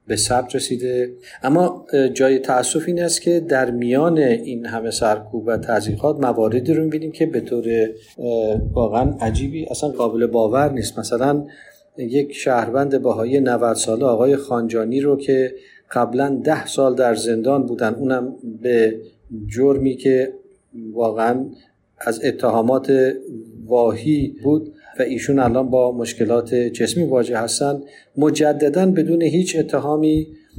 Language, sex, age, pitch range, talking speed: Persian, male, 40-59, 120-140 Hz, 130 wpm